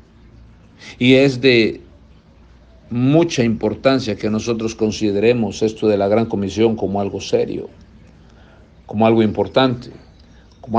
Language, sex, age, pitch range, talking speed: Spanish, male, 60-79, 90-120 Hz, 110 wpm